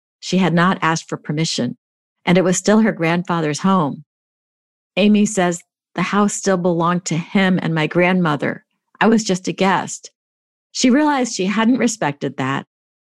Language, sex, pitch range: English, female, 155-195 Hz